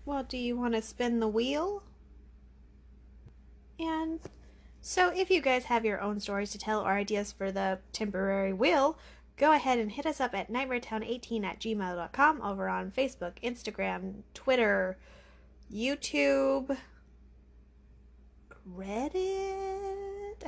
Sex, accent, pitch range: female, American, 195-265 Hz